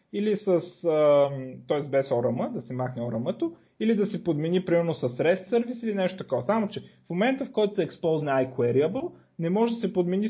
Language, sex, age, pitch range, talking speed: Bulgarian, male, 30-49, 135-200 Hz, 200 wpm